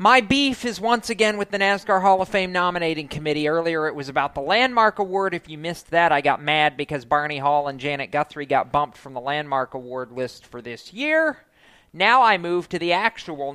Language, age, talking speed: English, 40-59, 215 wpm